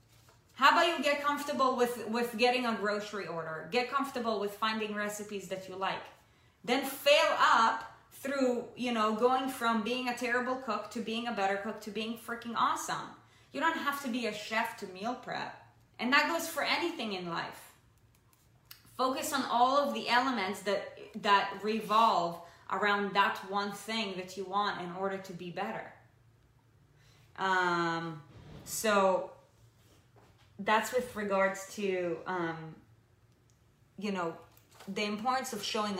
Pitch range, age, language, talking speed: 170-230 Hz, 20-39, English, 150 wpm